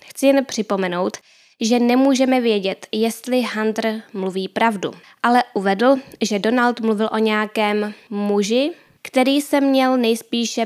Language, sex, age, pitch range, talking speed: Czech, female, 10-29, 205-235 Hz, 125 wpm